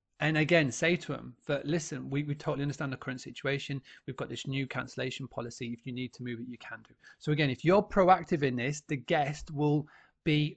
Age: 30-49